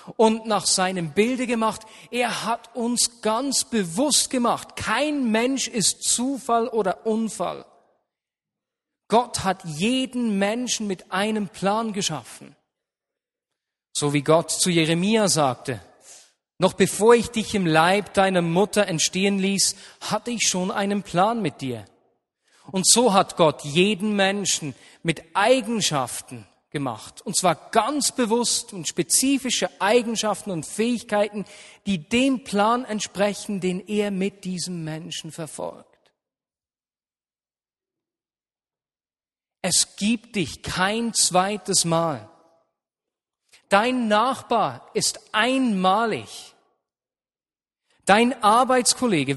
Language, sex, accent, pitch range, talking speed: German, male, German, 180-230 Hz, 105 wpm